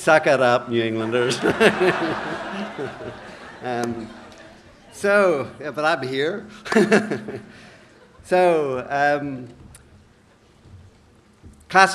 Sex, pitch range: male, 125-165 Hz